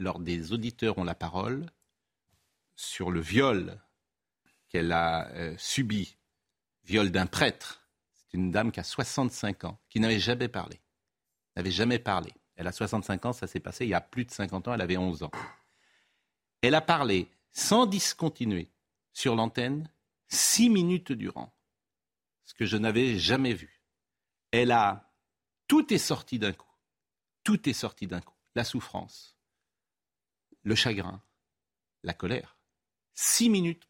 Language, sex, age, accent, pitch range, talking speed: French, male, 50-69, French, 95-140 Hz, 150 wpm